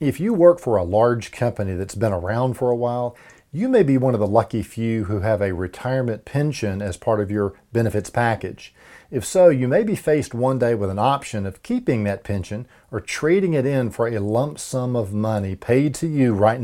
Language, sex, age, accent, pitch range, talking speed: English, male, 40-59, American, 105-130 Hz, 220 wpm